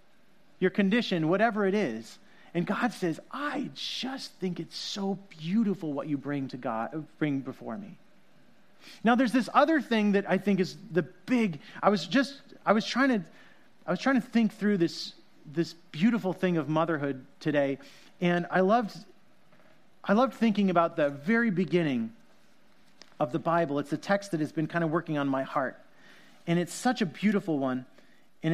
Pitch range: 155-205 Hz